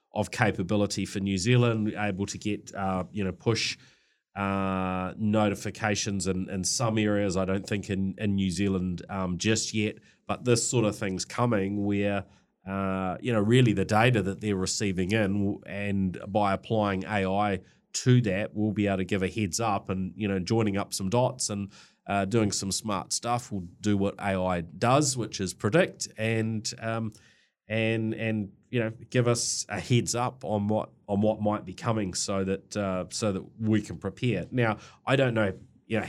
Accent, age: Australian, 30-49